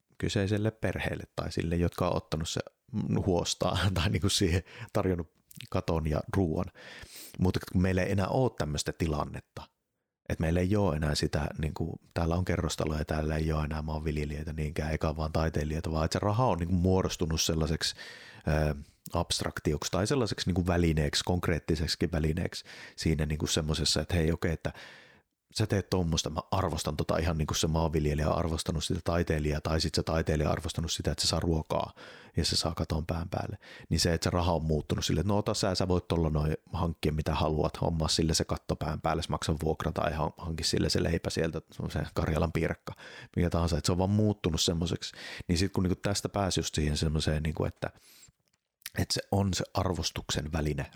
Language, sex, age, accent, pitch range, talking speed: Finnish, male, 30-49, native, 80-95 Hz, 175 wpm